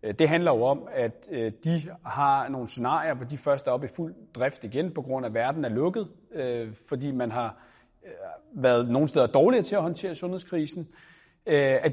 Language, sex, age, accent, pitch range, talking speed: Danish, male, 30-49, native, 130-170 Hz, 180 wpm